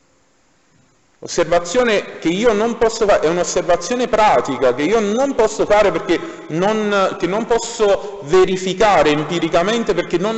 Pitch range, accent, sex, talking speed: 140-200 Hz, native, male, 125 wpm